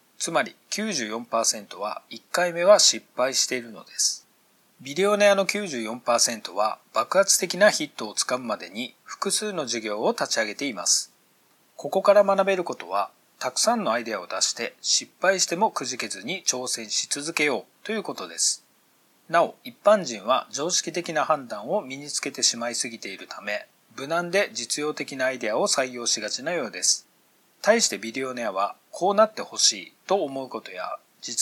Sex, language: male, Japanese